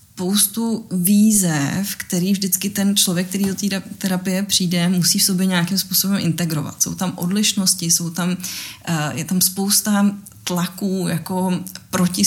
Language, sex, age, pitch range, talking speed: Czech, female, 20-39, 165-190 Hz, 135 wpm